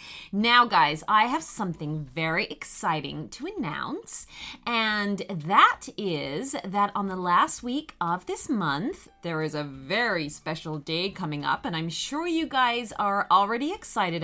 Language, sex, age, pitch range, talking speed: English, female, 30-49, 165-235 Hz, 150 wpm